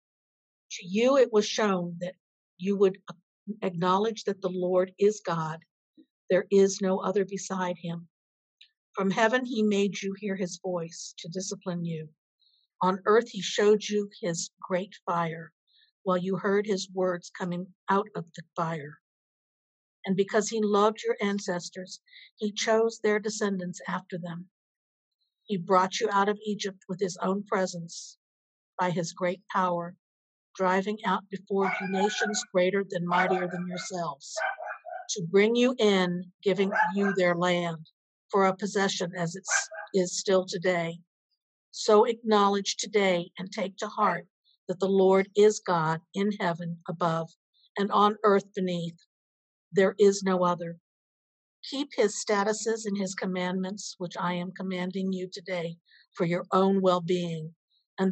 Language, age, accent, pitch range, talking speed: English, 50-69, American, 180-205 Hz, 145 wpm